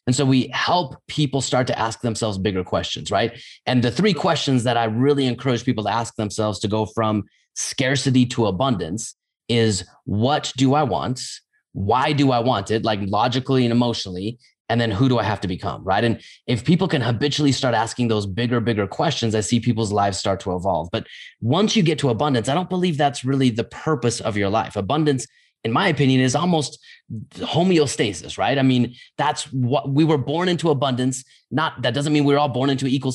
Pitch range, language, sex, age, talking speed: 110-140 Hz, English, male, 30-49, 205 wpm